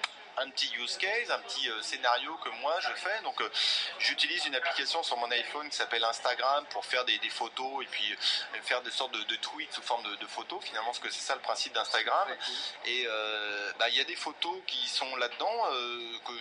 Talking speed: 225 wpm